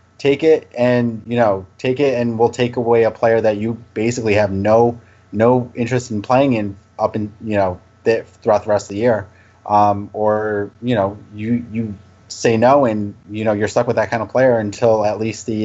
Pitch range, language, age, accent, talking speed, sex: 105-120 Hz, English, 30-49, American, 215 wpm, male